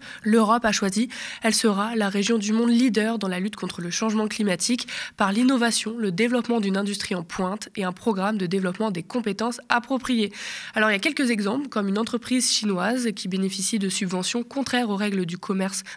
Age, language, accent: 20-39, French, French